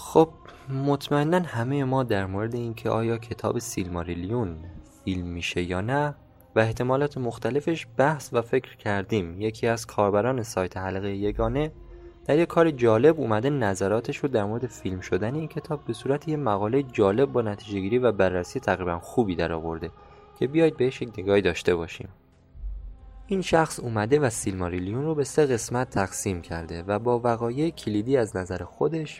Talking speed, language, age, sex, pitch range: 160 wpm, Persian, 20-39, male, 95-130 Hz